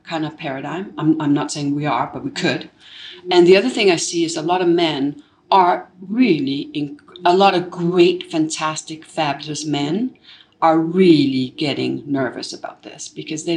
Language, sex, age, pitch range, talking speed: English, female, 60-79, 150-195 Hz, 175 wpm